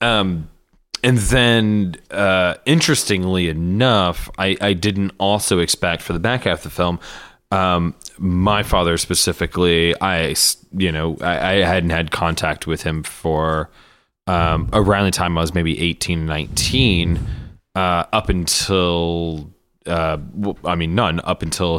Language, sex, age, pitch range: English, male, 20-39, 85-100 Hz